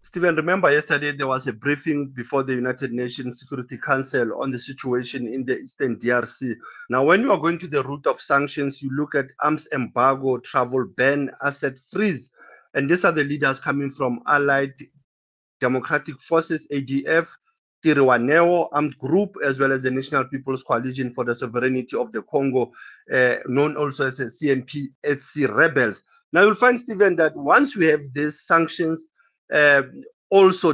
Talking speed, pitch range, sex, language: 165 wpm, 135-165 Hz, male, English